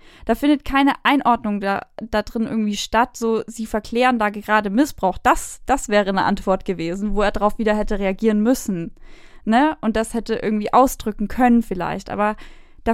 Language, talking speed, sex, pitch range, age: German, 175 wpm, female, 210-270 Hz, 10-29